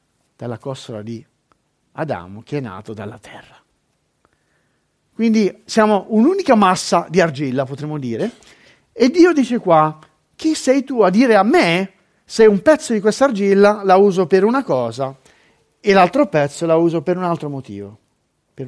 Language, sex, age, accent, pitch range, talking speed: Italian, male, 50-69, native, 140-205 Hz, 155 wpm